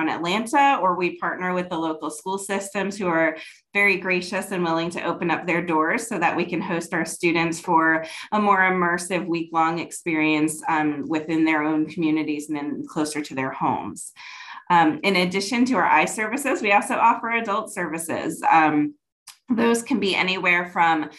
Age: 20-39